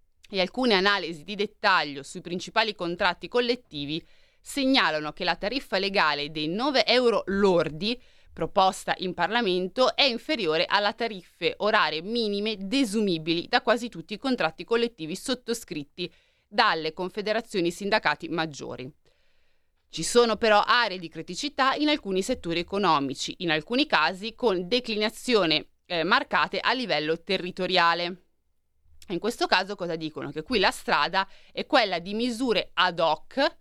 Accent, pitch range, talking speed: native, 170-235 Hz, 130 wpm